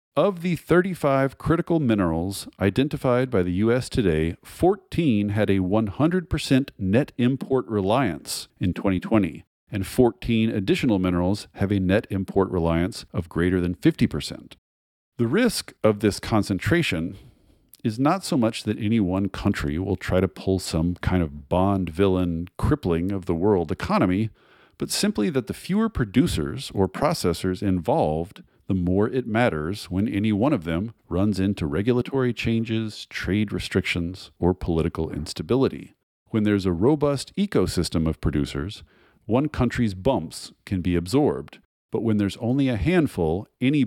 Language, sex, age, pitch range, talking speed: English, male, 40-59, 90-115 Hz, 145 wpm